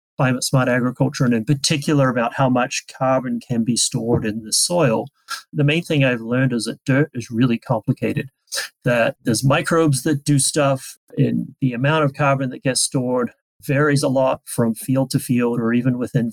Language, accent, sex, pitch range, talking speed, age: English, American, male, 120-140 Hz, 185 wpm, 30-49